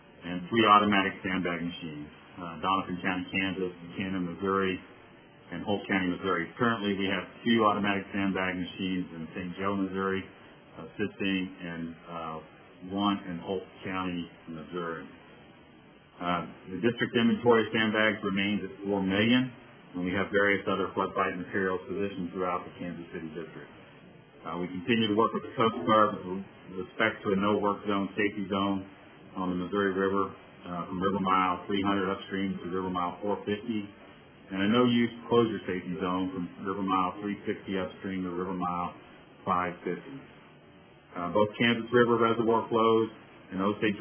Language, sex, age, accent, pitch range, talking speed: English, male, 40-59, American, 90-105 Hz, 155 wpm